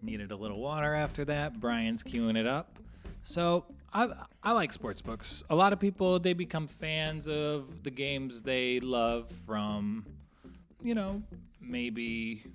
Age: 30-49